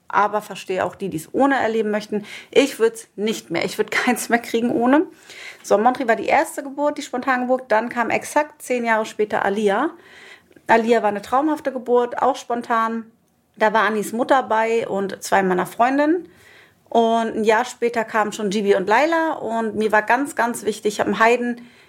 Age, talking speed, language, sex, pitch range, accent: 30-49, 195 wpm, German, female, 210-250 Hz, German